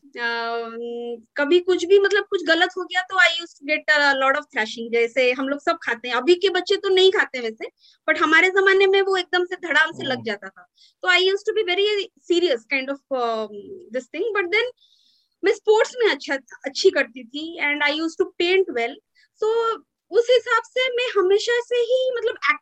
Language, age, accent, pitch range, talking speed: Hindi, 20-39, native, 285-405 Hz, 165 wpm